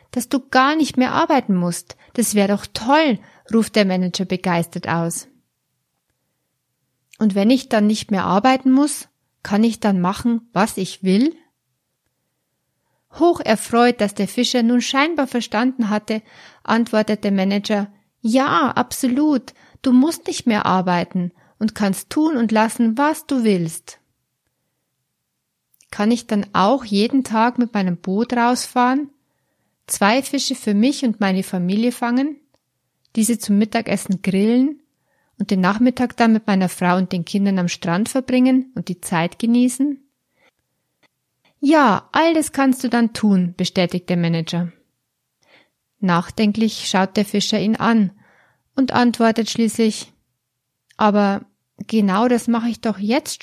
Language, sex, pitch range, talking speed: German, female, 195-250 Hz, 140 wpm